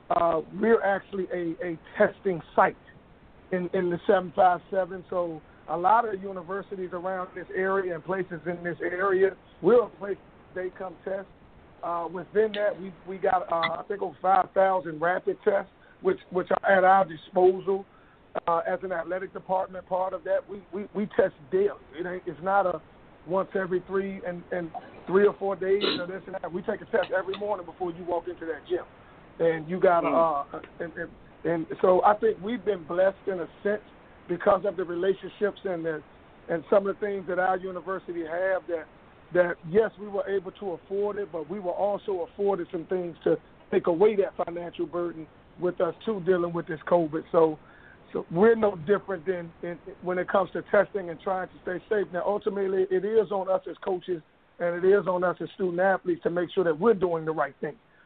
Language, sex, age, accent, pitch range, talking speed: English, male, 40-59, American, 175-195 Hz, 200 wpm